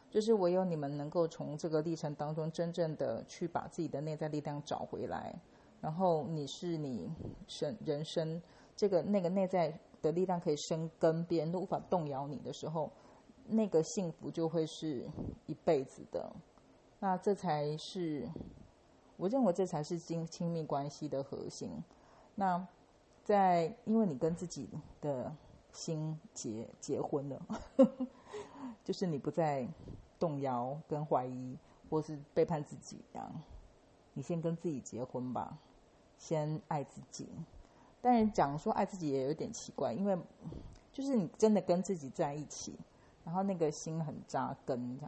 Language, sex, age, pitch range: English, female, 40-59, 150-185 Hz